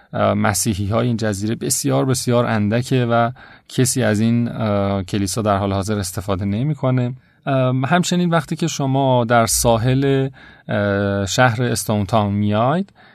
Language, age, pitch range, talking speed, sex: Persian, 30-49, 110-135 Hz, 120 wpm, male